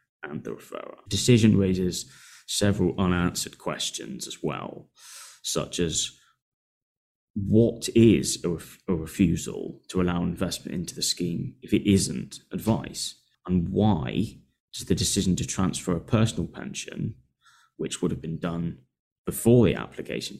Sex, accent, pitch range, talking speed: male, British, 90-105 Hz, 130 wpm